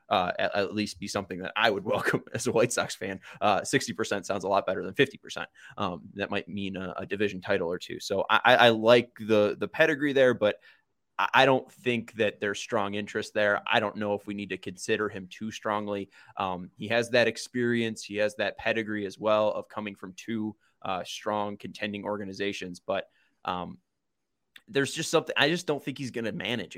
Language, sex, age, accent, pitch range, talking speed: English, male, 20-39, American, 100-115 Hz, 210 wpm